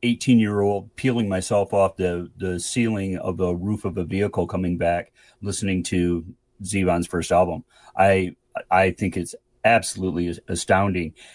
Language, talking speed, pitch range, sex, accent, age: English, 150 wpm, 95-115 Hz, male, American, 30-49